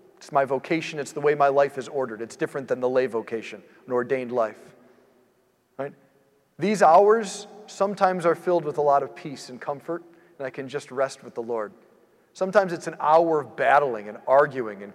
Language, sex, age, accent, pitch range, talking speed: English, male, 40-59, American, 130-170 Hz, 195 wpm